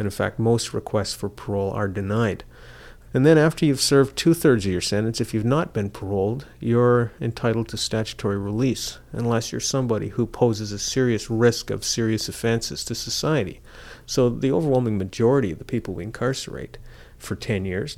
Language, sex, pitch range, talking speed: English, male, 100-120 Hz, 175 wpm